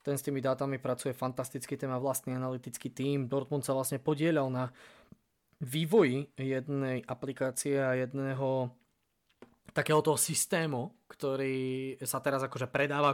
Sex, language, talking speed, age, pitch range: male, Slovak, 130 wpm, 20-39, 130-145 Hz